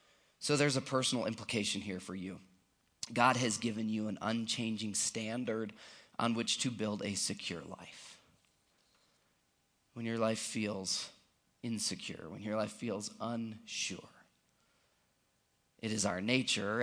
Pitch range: 100-115 Hz